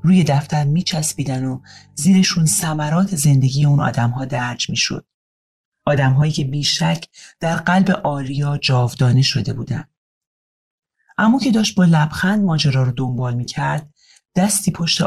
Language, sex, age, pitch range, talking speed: Persian, male, 40-59, 140-185 Hz, 125 wpm